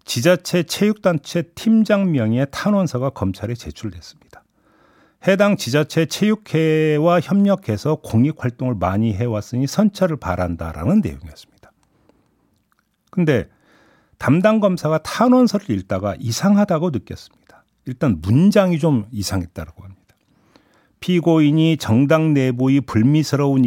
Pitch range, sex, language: 110-175 Hz, male, Korean